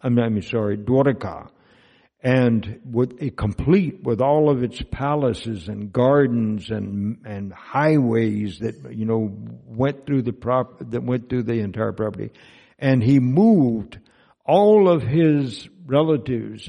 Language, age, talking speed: English, 60-79, 135 wpm